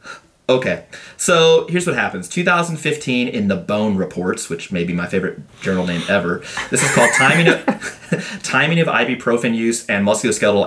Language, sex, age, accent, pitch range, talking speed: English, male, 30-49, American, 100-160 Hz, 165 wpm